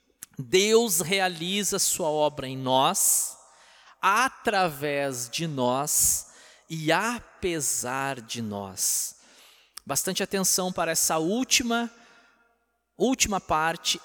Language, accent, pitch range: Portuguese, Brazilian, 145-190 Hz